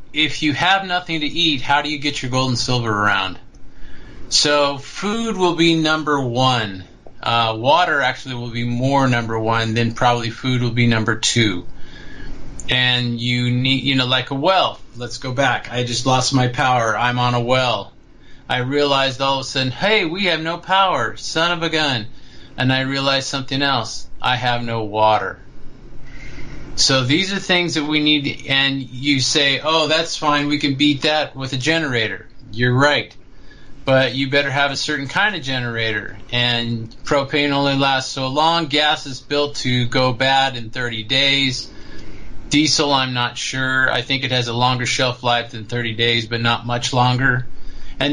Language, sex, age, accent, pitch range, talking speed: English, male, 30-49, American, 120-145 Hz, 180 wpm